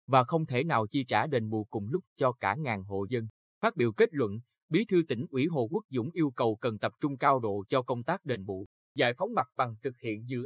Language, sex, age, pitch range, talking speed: Vietnamese, male, 20-39, 115-160 Hz, 260 wpm